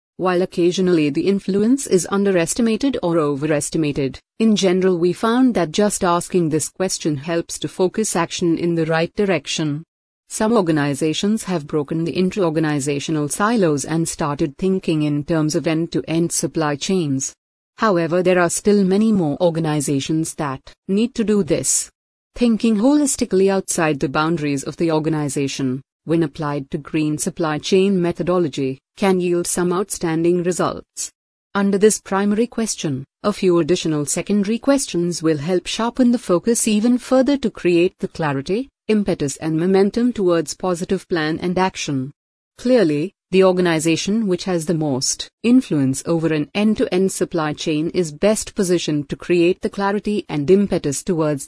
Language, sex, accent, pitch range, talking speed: English, female, Indian, 155-200 Hz, 145 wpm